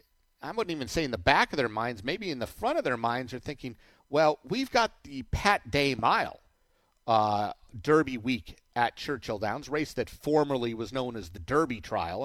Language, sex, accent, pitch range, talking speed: English, male, American, 100-135 Hz, 200 wpm